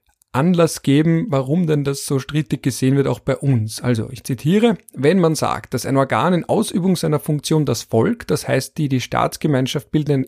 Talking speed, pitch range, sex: 195 wpm, 130-170 Hz, male